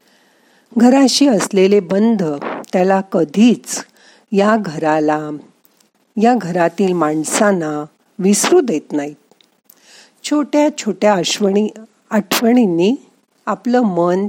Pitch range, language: 175-240 Hz, Marathi